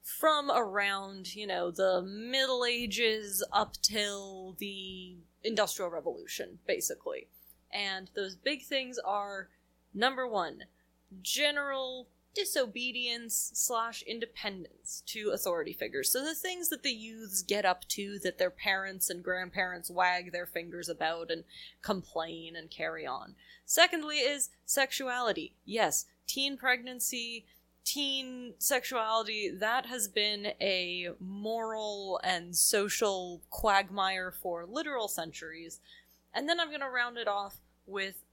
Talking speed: 120 wpm